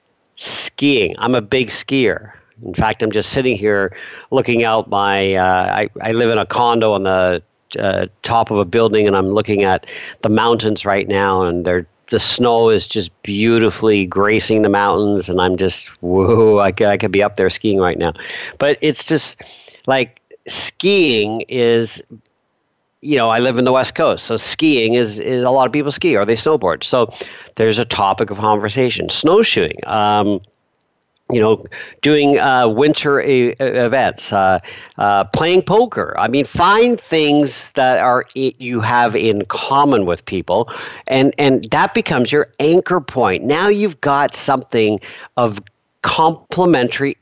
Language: English